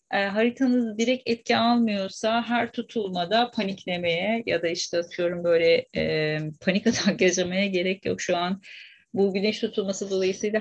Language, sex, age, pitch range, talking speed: Turkish, female, 40-59, 180-235 Hz, 130 wpm